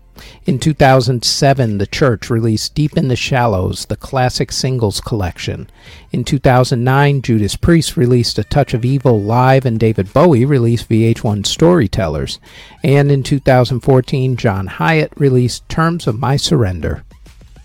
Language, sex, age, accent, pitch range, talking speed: English, male, 50-69, American, 110-145 Hz, 135 wpm